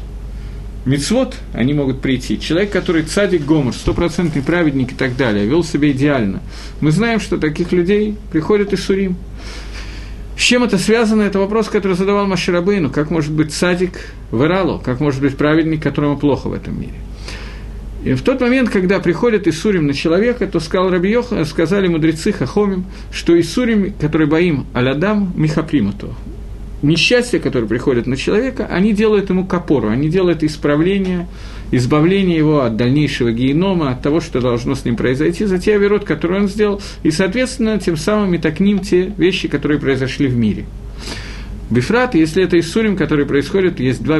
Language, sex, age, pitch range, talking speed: Russian, male, 50-69, 140-195 Hz, 165 wpm